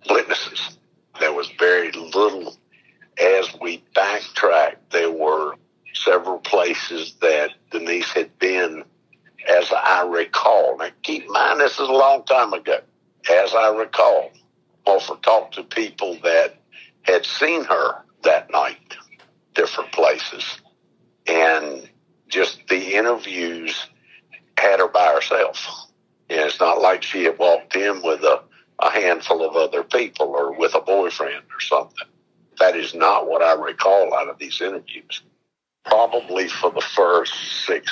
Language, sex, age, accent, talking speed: English, male, 60-79, American, 140 wpm